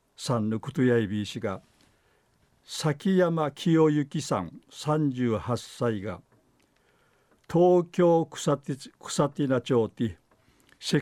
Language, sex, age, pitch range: Japanese, male, 50-69, 125-160 Hz